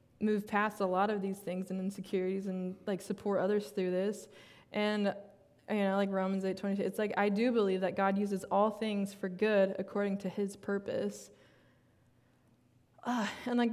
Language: English